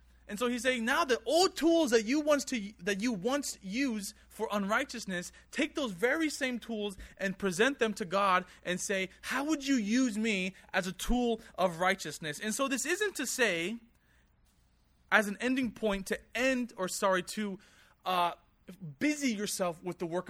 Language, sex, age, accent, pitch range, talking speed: English, male, 20-39, American, 185-240 Hz, 180 wpm